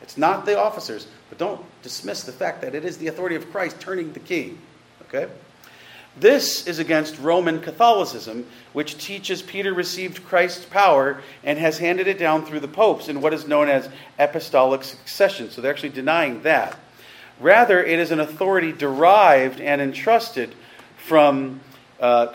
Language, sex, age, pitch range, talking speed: English, male, 40-59, 140-185 Hz, 165 wpm